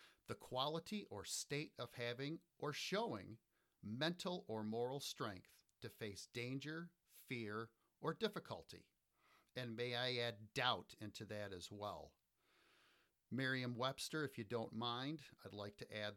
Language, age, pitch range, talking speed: English, 50-69, 110-160 Hz, 135 wpm